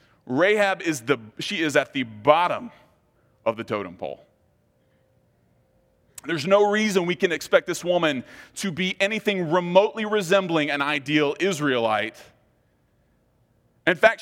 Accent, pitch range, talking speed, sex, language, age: American, 130-195 Hz, 125 wpm, male, English, 30-49